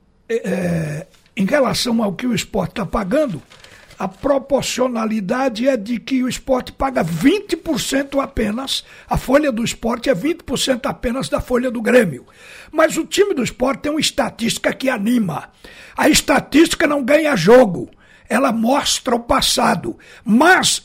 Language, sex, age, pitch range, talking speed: Portuguese, male, 60-79, 240-295 Hz, 140 wpm